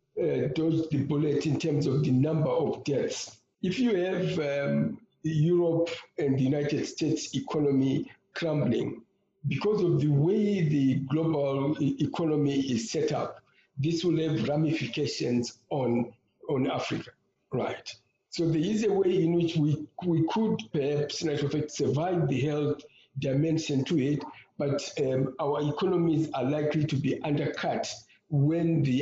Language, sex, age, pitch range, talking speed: English, male, 50-69, 135-160 Hz, 145 wpm